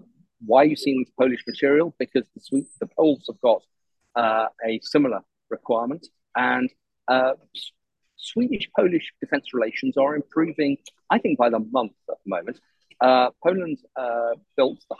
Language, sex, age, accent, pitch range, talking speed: English, male, 40-59, British, 110-145 Hz, 155 wpm